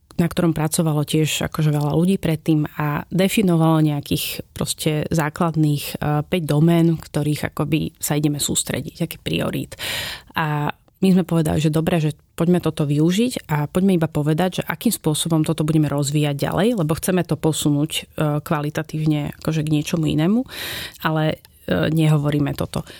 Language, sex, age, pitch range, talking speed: Slovak, female, 30-49, 150-170 Hz, 145 wpm